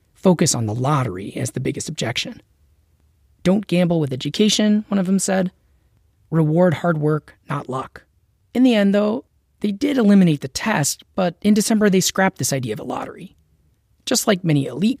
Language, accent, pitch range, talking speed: English, American, 130-210 Hz, 175 wpm